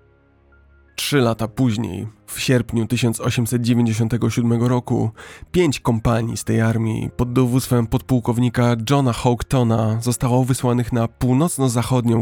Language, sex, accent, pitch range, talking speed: Polish, male, native, 110-125 Hz, 105 wpm